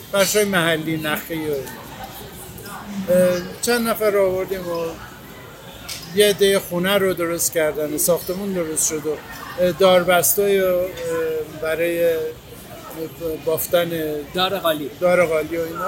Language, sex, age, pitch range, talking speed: Persian, male, 50-69, 170-205 Hz, 100 wpm